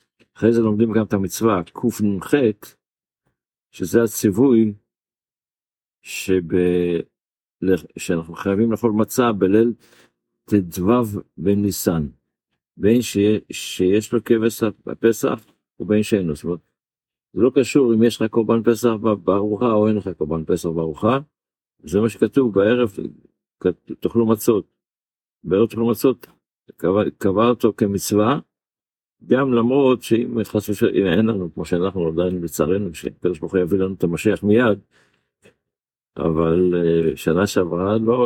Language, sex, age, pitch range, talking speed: Hebrew, male, 50-69, 95-115 Hz, 115 wpm